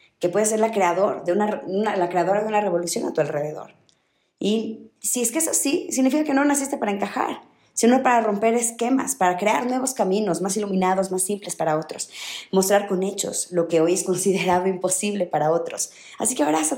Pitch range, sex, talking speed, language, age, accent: 170-225 Hz, female, 200 wpm, Spanish, 20-39, Mexican